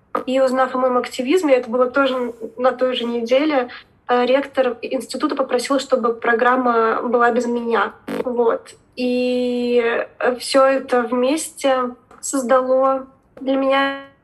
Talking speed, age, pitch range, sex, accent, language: 120 wpm, 20-39, 245-270 Hz, female, native, Russian